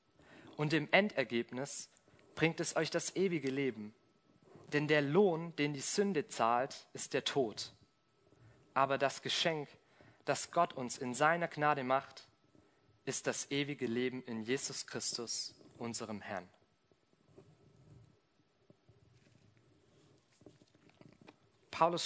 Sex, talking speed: male, 105 wpm